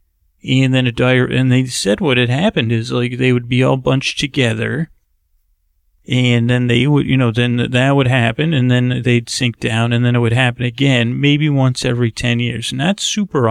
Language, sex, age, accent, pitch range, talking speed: English, male, 40-59, American, 110-140 Hz, 205 wpm